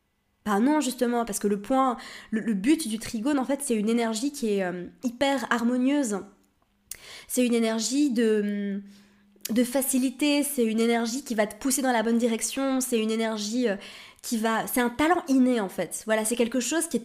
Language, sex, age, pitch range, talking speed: French, female, 20-39, 215-265 Hz, 200 wpm